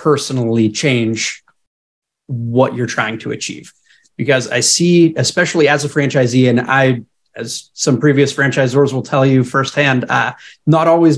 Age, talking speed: 30-49, 145 wpm